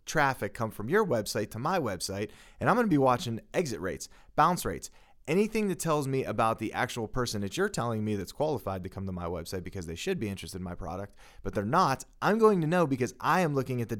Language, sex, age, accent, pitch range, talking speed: English, male, 30-49, American, 100-155 Hz, 250 wpm